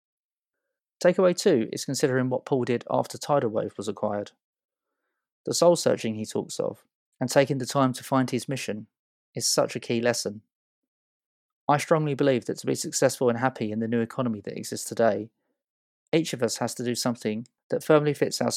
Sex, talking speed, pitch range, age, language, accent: male, 185 wpm, 110-135 Hz, 20-39, English, British